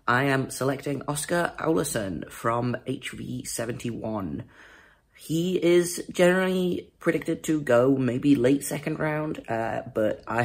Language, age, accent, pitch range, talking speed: English, 30-49, British, 110-140 Hz, 115 wpm